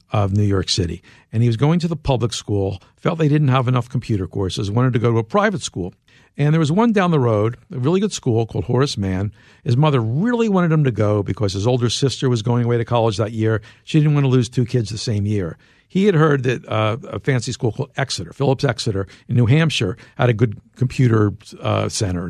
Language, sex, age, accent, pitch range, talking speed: English, male, 50-69, American, 110-175 Hz, 240 wpm